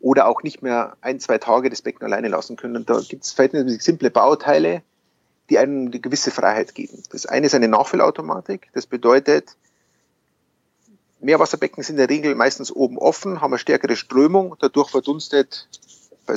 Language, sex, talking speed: German, male, 170 wpm